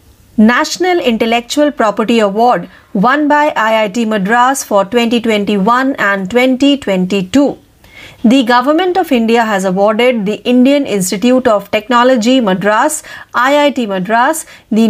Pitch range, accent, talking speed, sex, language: 215-280 Hz, native, 110 wpm, female, Marathi